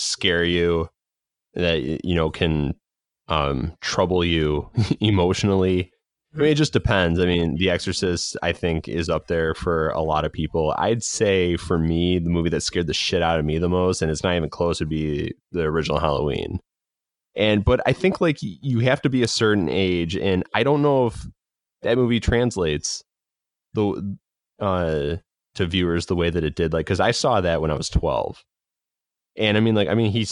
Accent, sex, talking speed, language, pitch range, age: American, male, 195 wpm, English, 80-100 Hz, 20-39